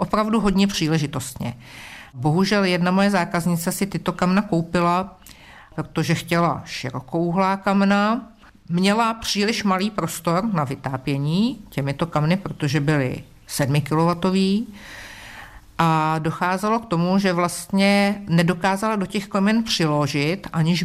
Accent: native